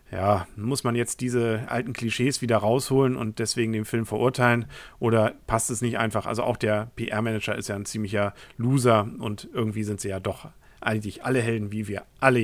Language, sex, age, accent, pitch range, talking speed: German, male, 50-69, German, 110-130 Hz, 195 wpm